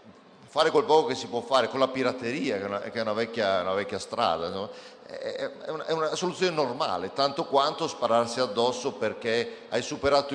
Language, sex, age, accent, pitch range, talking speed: Italian, male, 50-69, native, 115-160 Hz, 160 wpm